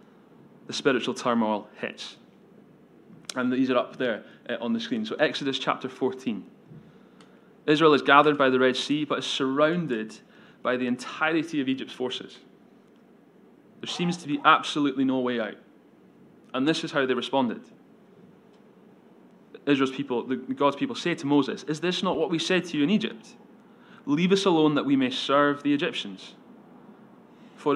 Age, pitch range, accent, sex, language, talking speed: 20-39, 130-220 Hz, British, male, English, 160 wpm